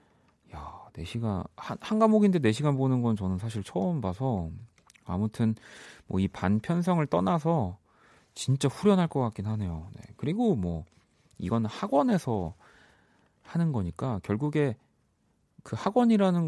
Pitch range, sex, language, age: 95-140 Hz, male, Korean, 40-59